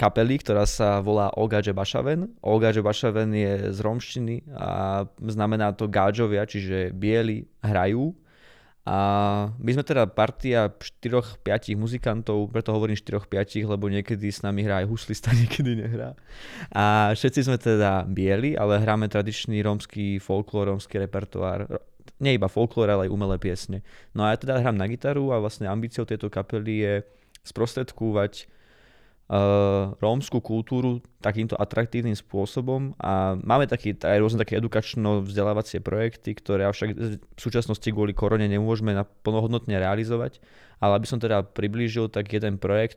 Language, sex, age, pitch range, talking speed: Slovak, male, 20-39, 100-115 Hz, 135 wpm